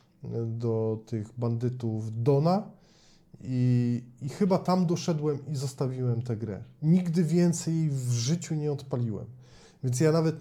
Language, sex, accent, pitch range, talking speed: Polish, male, native, 125-150 Hz, 125 wpm